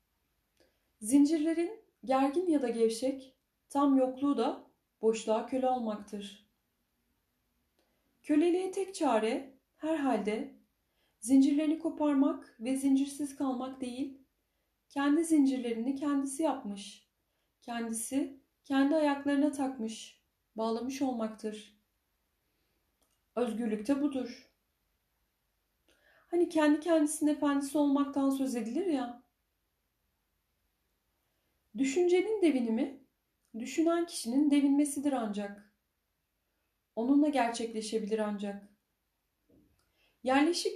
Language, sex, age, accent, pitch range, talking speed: Turkish, female, 30-49, native, 225-290 Hz, 75 wpm